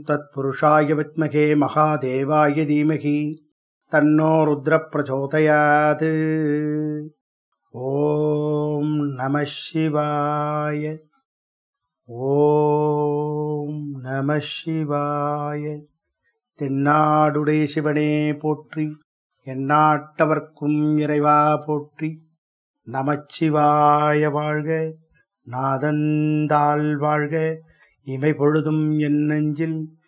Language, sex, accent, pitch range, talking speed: English, male, Indian, 145-155 Hz, 40 wpm